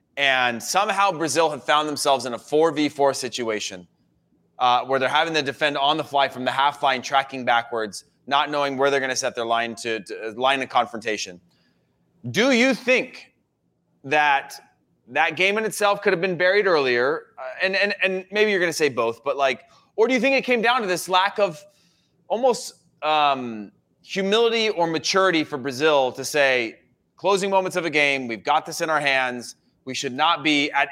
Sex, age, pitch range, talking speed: male, 20-39, 135-185 Hz, 190 wpm